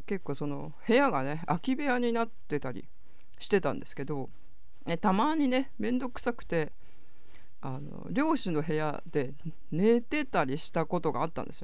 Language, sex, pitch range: Japanese, female, 130-200 Hz